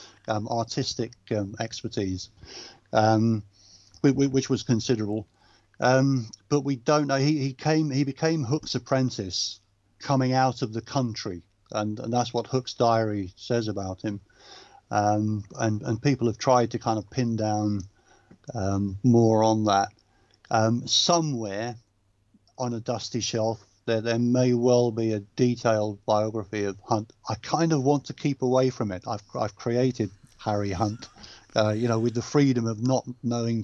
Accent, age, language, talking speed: British, 50-69, English, 160 wpm